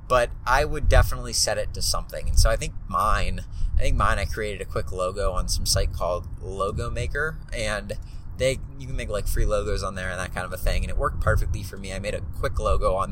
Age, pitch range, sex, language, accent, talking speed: 20-39, 90-105 Hz, male, English, American, 250 wpm